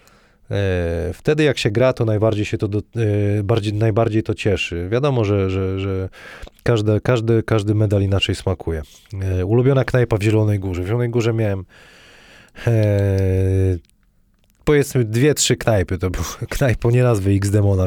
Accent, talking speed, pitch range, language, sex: native, 155 wpm, 95-120 Hz, Polish, male